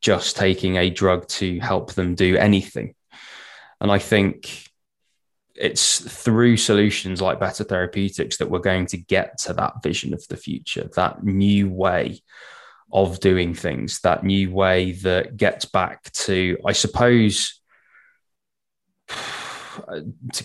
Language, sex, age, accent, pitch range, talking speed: English, male, 20-39, British, 95-105 Hz, 130 wpm